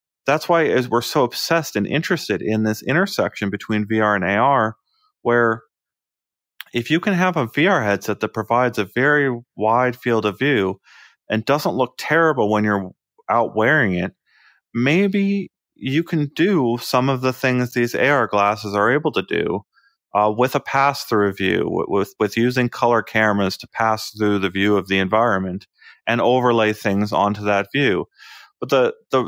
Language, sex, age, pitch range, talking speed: English, male, 30-49, 110-155 Hz, 165 wpm